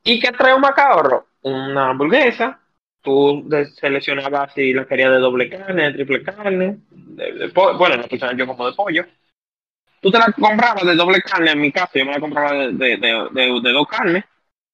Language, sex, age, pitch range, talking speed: Spanish, male, 20-39, 135-205 Hz, 195 wpm